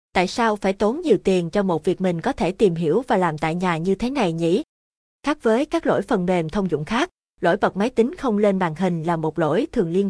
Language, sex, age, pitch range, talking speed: Vietnamese, female, 20-39, 175-225 Hz, 260 wpm